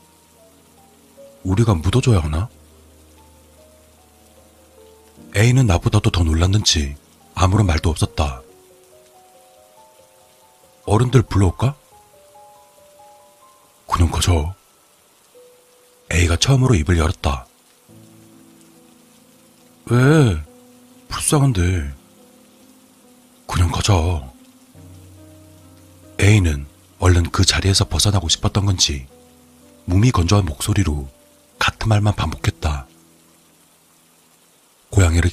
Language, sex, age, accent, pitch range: Korean, male, 40-59, native, 80-120 Hz